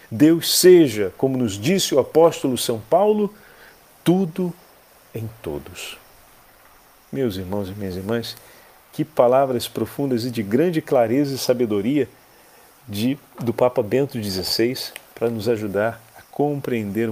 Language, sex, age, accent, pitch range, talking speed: Portuguese, male, 40-59, Brazilian, 110-145 Hz, 125 wpm